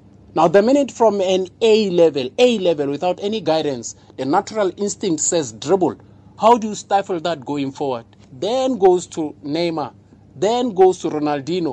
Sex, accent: male, South African